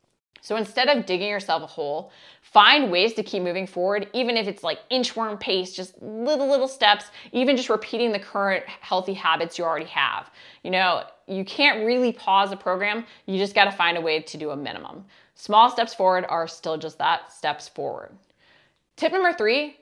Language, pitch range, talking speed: English, 175-230 Hz, 195 wpm